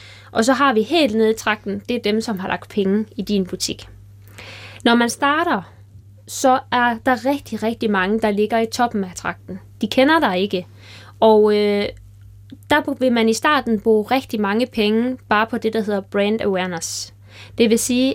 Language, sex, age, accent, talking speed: Danish, female, 20-39, native, 190 wpm